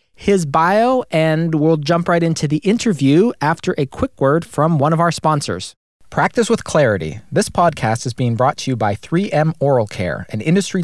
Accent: American